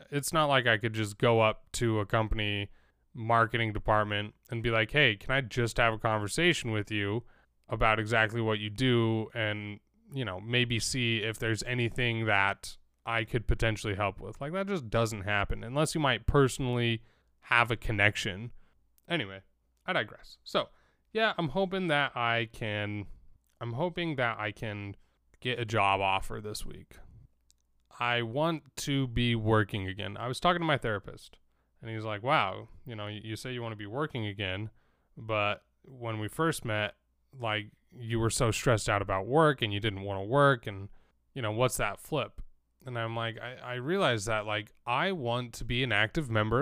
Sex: male